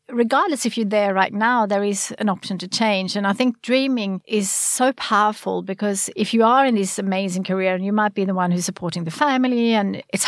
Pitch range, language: 185-215 Hz, English